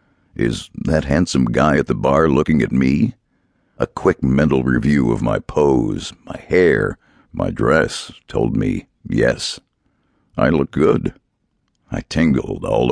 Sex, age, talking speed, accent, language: male, 60-79, 140 wpm, American, English